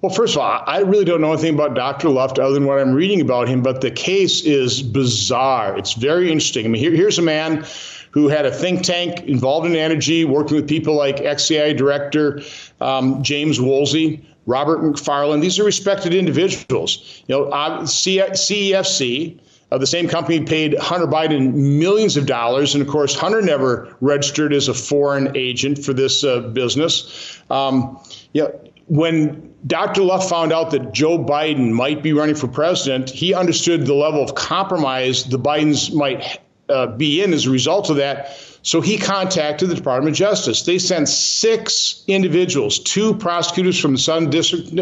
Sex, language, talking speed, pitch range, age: male, English, 175 wpm, 140-175 Hz, 50-69